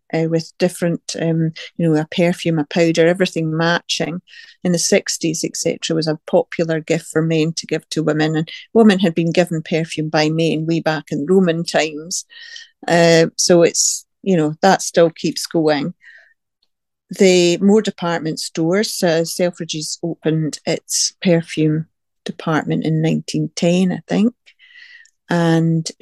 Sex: female